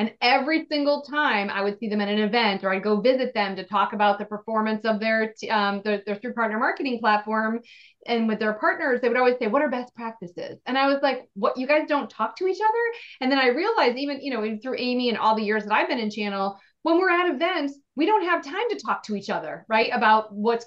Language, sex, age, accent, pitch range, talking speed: English, female, 30-49, American, 205-265 Hz, 255 wpm